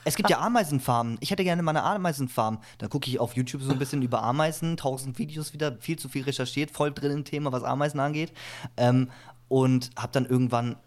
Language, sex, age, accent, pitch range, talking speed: German, male, 20-39, German, 115-135 Hz, 210 wpm